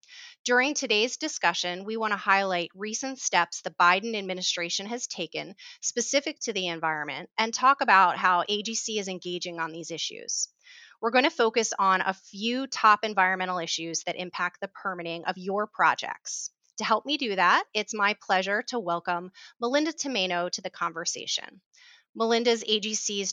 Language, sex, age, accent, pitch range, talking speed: English, female, 30-49, American, 180-225 Hz, 160 wpm